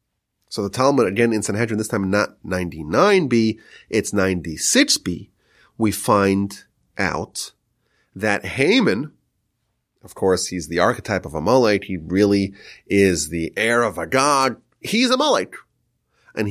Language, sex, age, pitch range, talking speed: English, male, 30-49, 100-165 Hz, 140 wpm